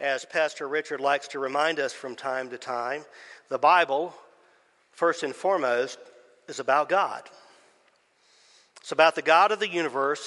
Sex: male